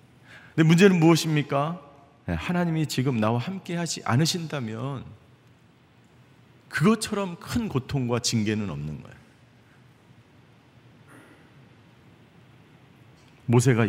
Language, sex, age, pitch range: Korean, male, 50-69, 115-150 Hz